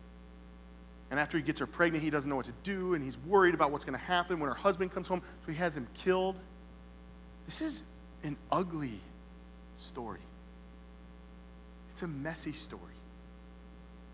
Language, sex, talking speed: English, male, 165 wpm